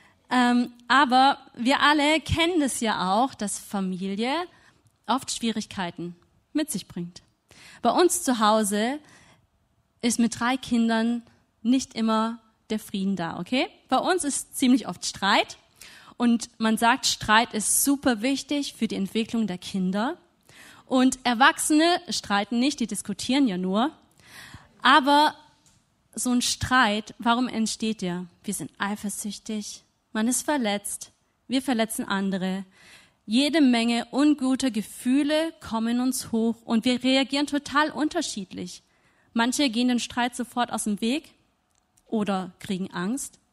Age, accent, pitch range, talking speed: 20-39, German, 210-260 Hz, 130 wpm